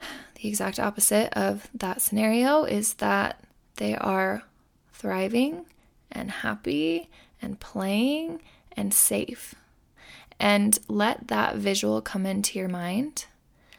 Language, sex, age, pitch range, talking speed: English, female, 20-39, 185-220 Hz, 110 wpm